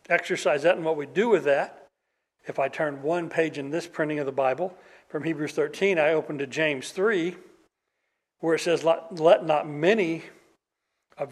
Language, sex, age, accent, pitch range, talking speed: English, male, 60-79, American, 140-185 Hz, 180 wpm